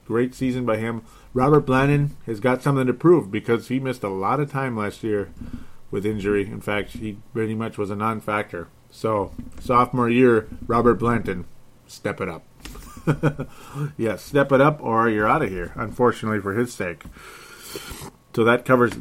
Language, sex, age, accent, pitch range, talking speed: English, male, 30-49, American, 105-125 Hz, 175 wpm